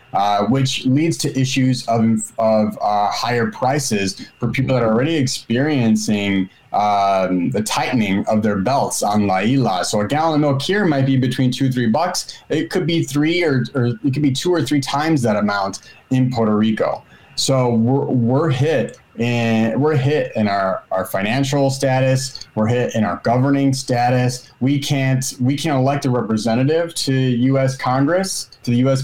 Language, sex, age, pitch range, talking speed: English, male, 30-49, 115-145 Hz, 180 wpm